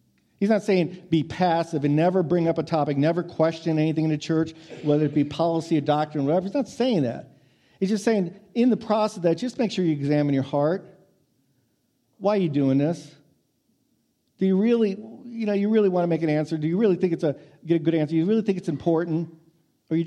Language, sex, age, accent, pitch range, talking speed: English, male, 50-69, American, 150-190 Hz, 240 wpm